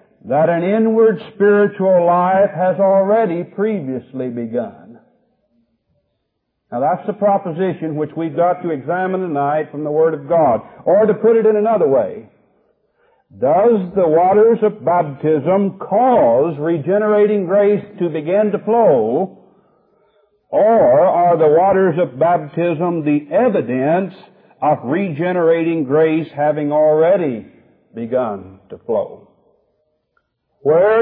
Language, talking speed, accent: English, 115 wpm, American